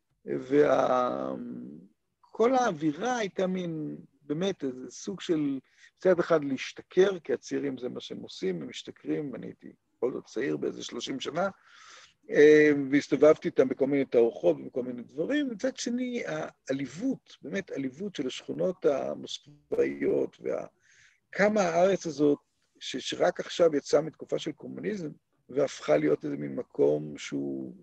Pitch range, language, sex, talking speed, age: 145-220 Hz, Hebrew, male, 130 wpm, 50-69